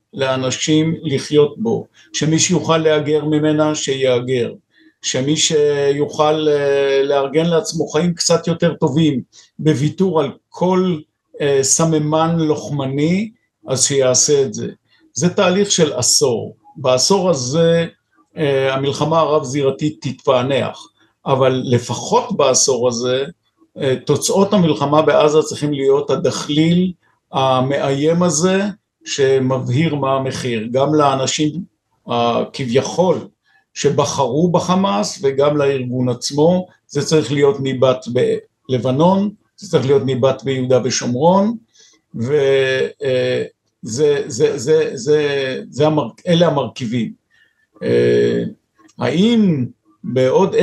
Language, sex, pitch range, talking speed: Hebrew, male, 130-170 Hz, 85 wpm